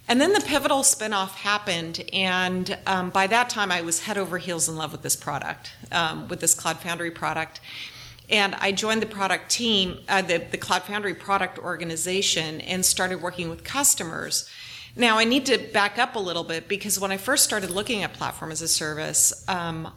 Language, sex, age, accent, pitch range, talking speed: English, female, 40-59, American, 170-205 Hz, 200 wpm